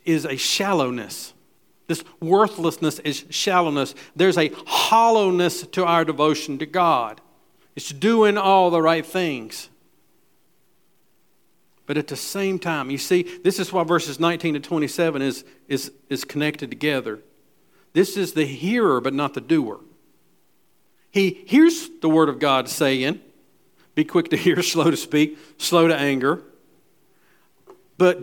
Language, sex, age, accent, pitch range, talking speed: English, male, 50-69, American, 150-210 Hz, 140 wpm